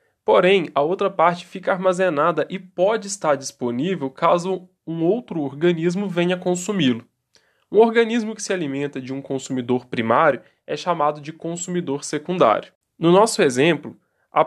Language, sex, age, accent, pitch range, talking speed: Portuguese, male, 10-29, Brazilian, 145-190 Hz, 140 wpm